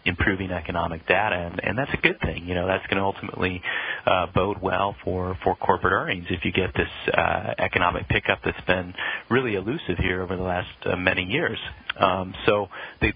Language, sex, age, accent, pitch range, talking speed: English, male, 40-59, American, 90-100 Hz, 195 wpm